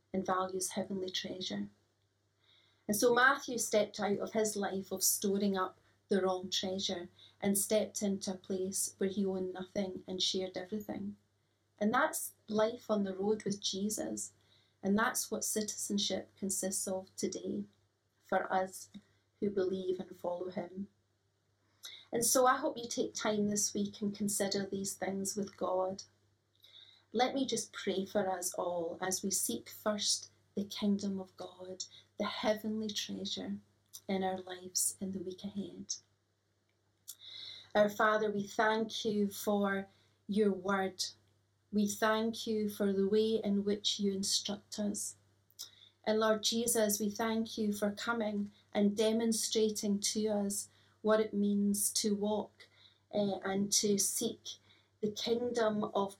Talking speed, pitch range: 145 wpm, 185-210 Hz